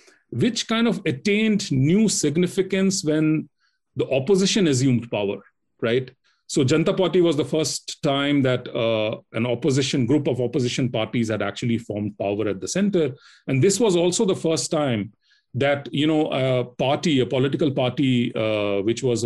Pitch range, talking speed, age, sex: 120-160 Hz, 160 wpm, 40-59, male